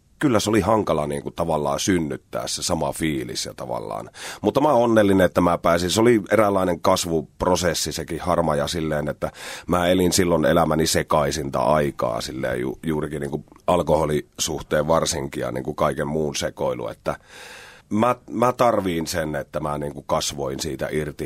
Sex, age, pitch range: male, 30-49, 70-85 Hz